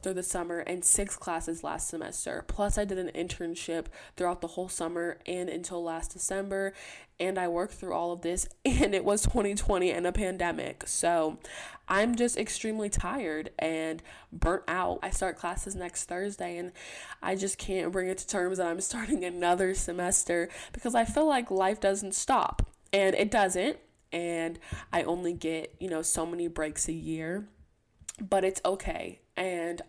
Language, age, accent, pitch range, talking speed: English, 20-39, American, 170-195 Hz, 170 wpm